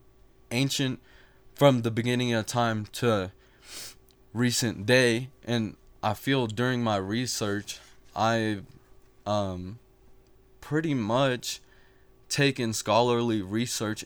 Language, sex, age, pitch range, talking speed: English, male, 20-39, 105-125 Hz, 95 wpm